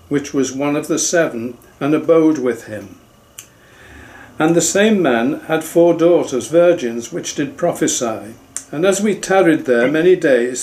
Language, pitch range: English, 130-175 Hz